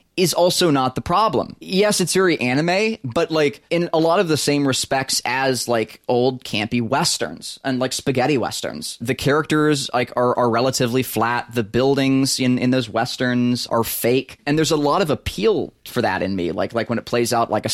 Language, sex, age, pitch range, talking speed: English, male, 20-39, 115-145 Hz, 205 wpm